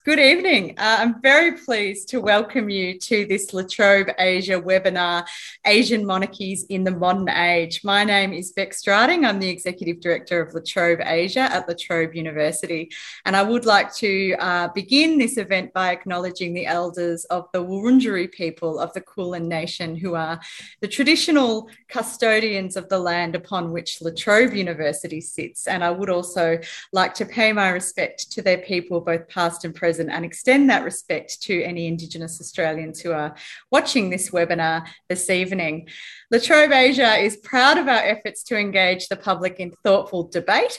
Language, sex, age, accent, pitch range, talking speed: English, female, 30-49, Australian, 175-220 Hz, 170 wpm